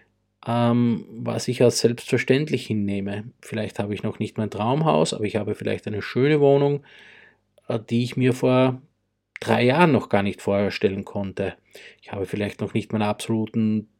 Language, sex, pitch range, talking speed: English, male, 110-135 Hz, 160 wpm